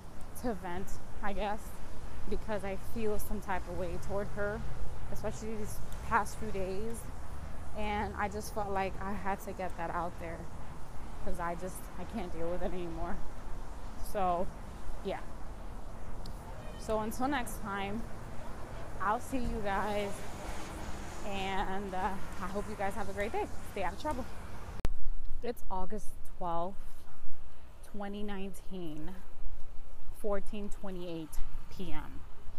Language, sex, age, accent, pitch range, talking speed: English, female, 20-39, American, 130-200 Hz, 125 wpm